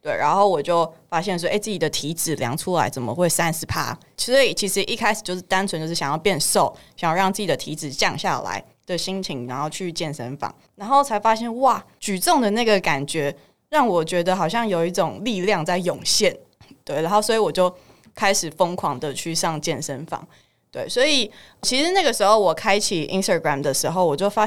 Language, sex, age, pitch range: Chinese, female, 20-39, 160-210 Hz